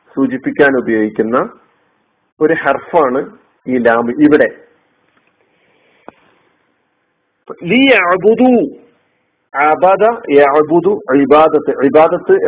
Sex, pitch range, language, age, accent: male, 130-180 Hz, Malayalam, 50-69, native